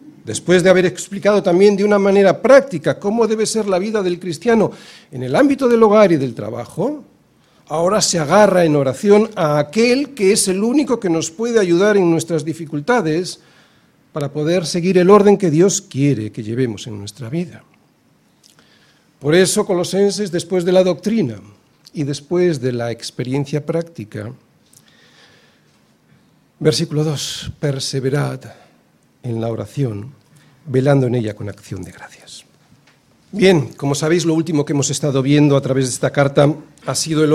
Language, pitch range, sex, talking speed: Spanish, 135-195 Hz, male, 155 wpm